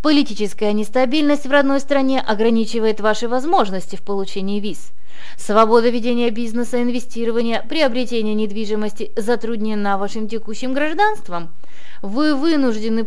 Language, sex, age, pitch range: Russian, female, 20-39, 210-255 Hz